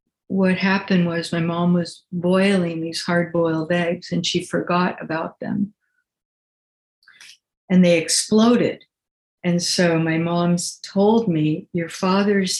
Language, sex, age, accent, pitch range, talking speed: English, female, 60-79, American, 170-195 Hz, 130 wpm